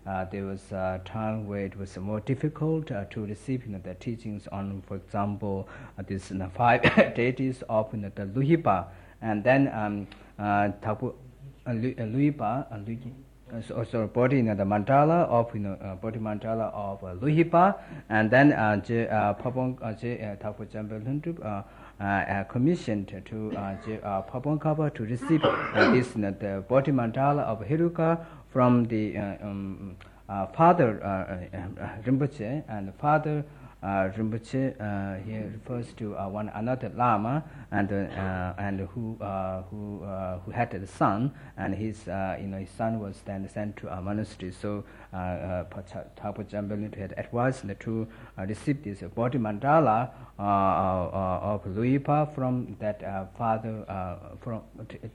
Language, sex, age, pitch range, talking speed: Italian, male, 60-79, 100-125 Hz, 155 wpm